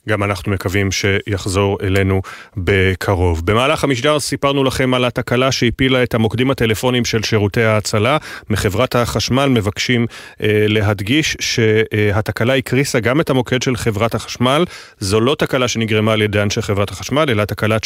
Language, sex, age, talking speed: Hebrew, male, 30-49, 145 wpm